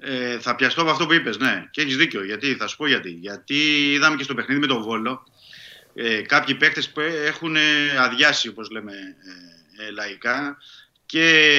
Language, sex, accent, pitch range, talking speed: Greek, male, native, 120-150 Hz, 165 wpm